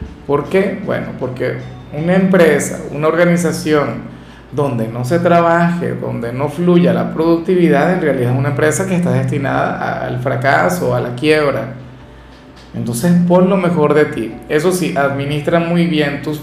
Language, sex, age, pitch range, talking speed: Spanish, male, 40-59, 130-170 Hz, 155 wpm